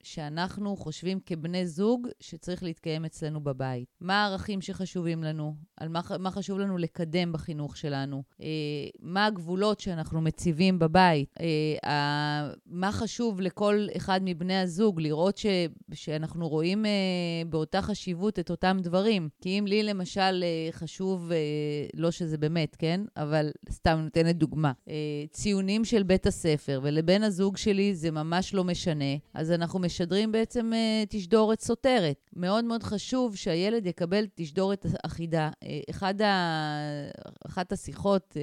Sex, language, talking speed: female, Hebrew, 135 wpm